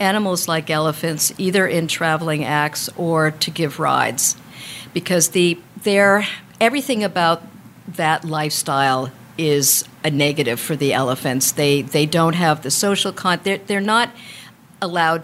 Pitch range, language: 145-175 Hz, English